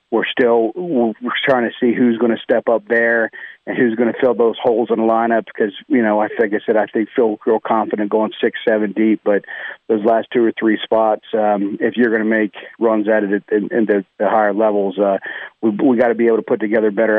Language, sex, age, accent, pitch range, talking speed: English, male, 40-59, American, 110-120 Hz, 250 wpm